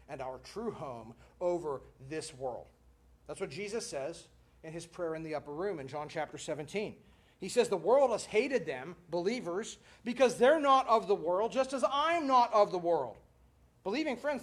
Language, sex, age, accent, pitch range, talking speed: English, male, 40-59, American, 160-275 Hz, 185 wpm